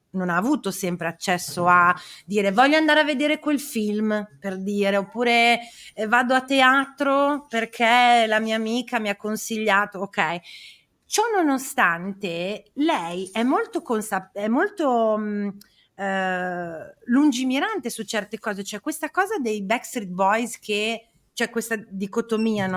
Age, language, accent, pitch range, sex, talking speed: 30-49, Italian, native, 185-240 Hz, female, 135 wpm